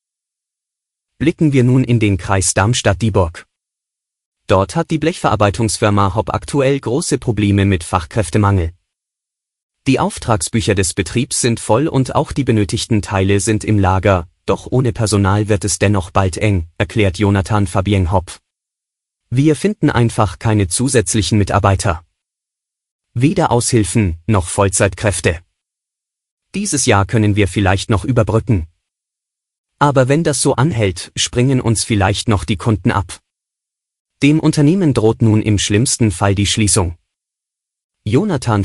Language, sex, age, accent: German, male, 30-49, German